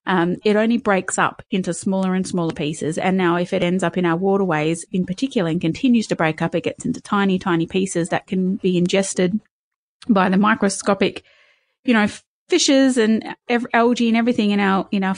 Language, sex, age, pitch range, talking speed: English, female, 30-49, 175-215 Hz, 200 wpm